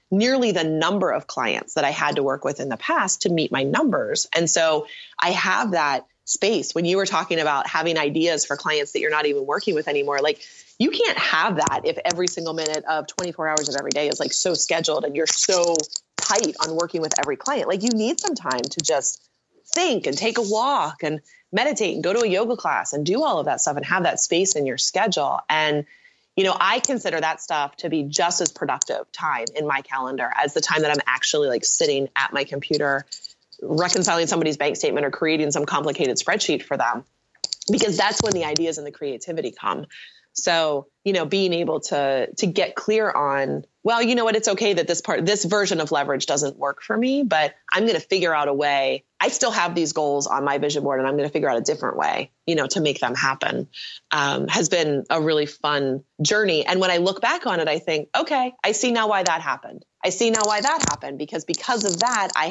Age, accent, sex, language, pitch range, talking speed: 30-49, American, female, English, 150-215 Hz, 230 wpm